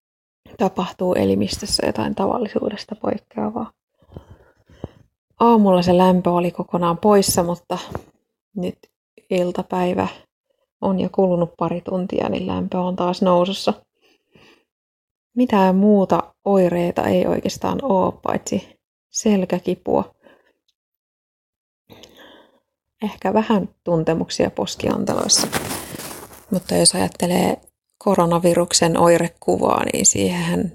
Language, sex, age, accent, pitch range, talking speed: Finnish, female, 20-39, native, 170-205 Hz, 85 wpm